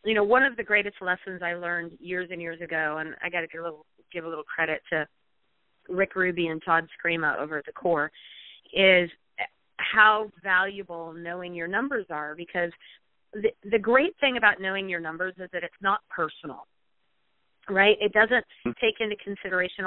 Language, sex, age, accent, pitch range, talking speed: English, female, 30-49, American, 175-215 Hz, 185 wpm